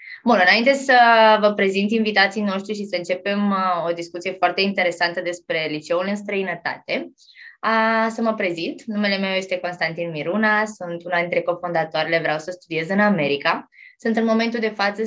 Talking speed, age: 165 wpm, 20-39